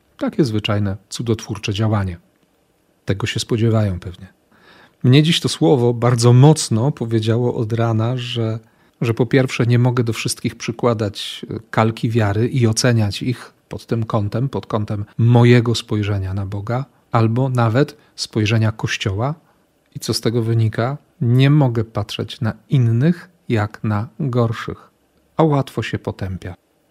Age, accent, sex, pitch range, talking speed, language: 40-59, native, male, 110-135 Hz, 135 wpm, Polish